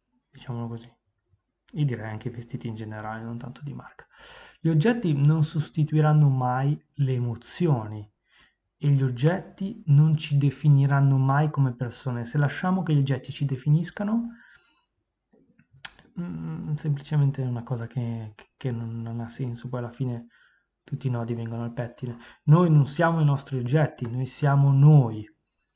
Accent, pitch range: native, 120-150 Hz